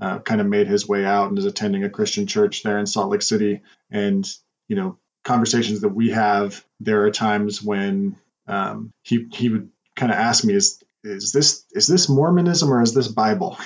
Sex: male